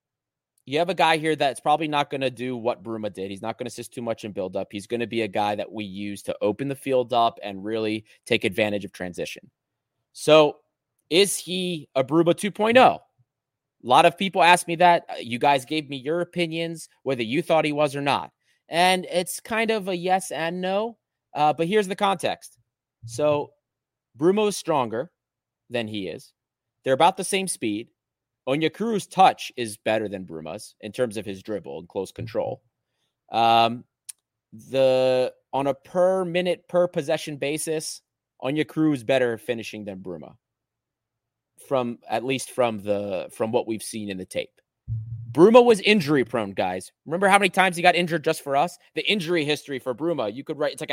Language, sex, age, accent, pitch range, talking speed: English, male, 30-49, American, 115-170 Hz, 190 wpm